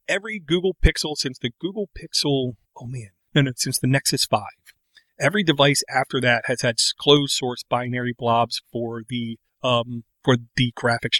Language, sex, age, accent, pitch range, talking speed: English, male, 40-59, American, 120-140 Hz, 165 wpm